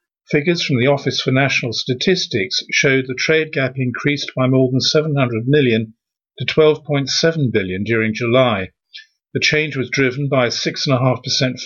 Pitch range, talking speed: 125-150 Hz, 150 wpm